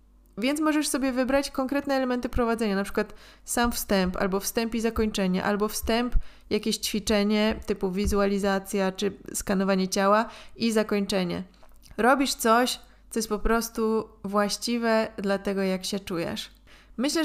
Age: 20-39